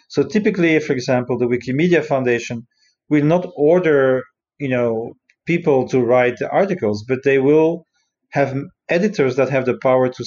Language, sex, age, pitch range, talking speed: English, male, 40-59, 130-170 Hz, 160 wpm